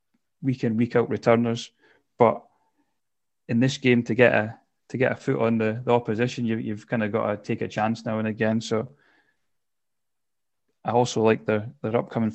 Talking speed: 165 wpm